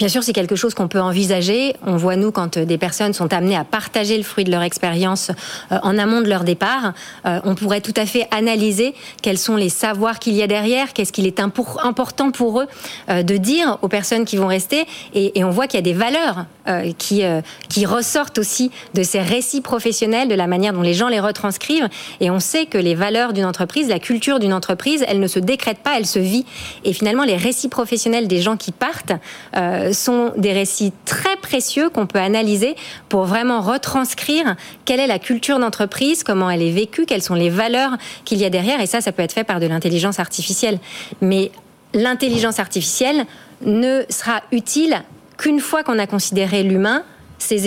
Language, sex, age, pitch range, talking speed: French, female, 40-59, 190-245 Hz, 200 wpm